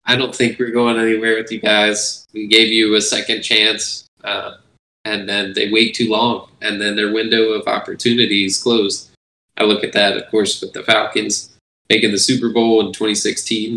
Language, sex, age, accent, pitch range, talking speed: English, male, 20-39, American, 100-115 Hz, 195 wpm